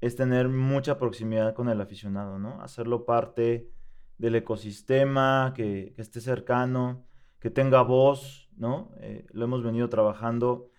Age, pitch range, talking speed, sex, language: 20-39, 115-135 Hz, 135 wpm, male, Spanish